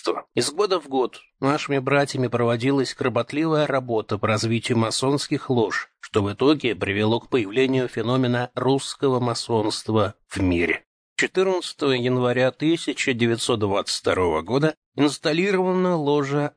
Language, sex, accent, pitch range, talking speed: Russian, male, native, 115-145 Hz, 110 wpm